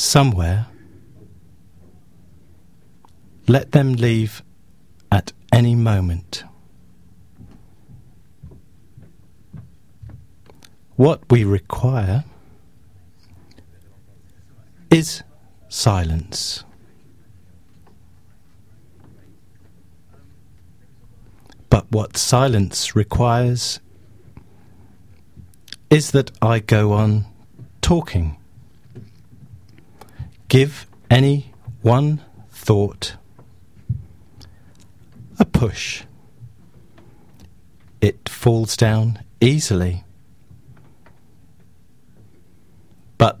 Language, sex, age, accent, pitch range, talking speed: English, male, 40-59, British, 90-120 Hz, 45 wpm